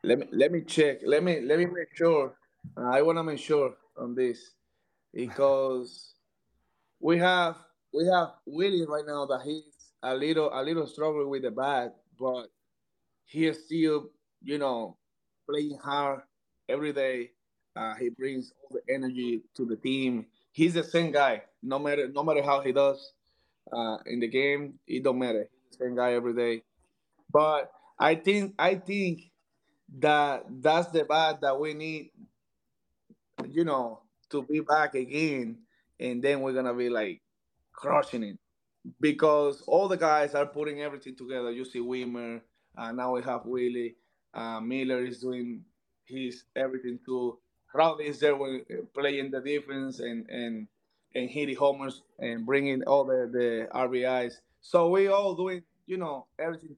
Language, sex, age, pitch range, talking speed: English, male, 30-49, 125-155 Hz, 165 wpm